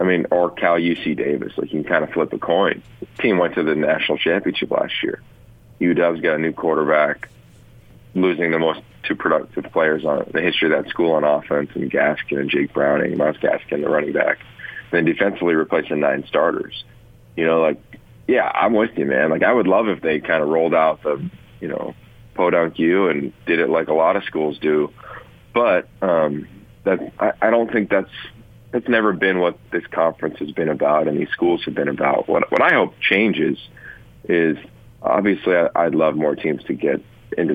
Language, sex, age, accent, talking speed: English, male, 30-49, American, 205 wpm